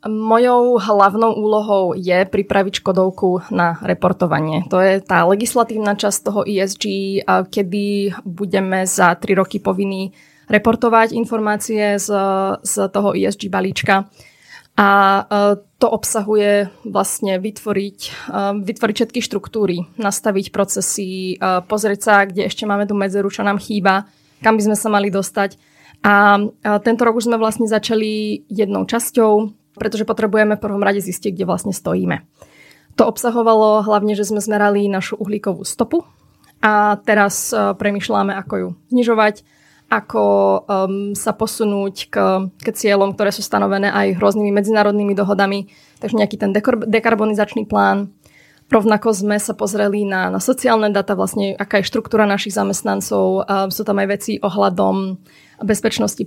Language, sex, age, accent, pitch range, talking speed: Czech, female, 20-39, native, 195-215 Hz, 135 wpm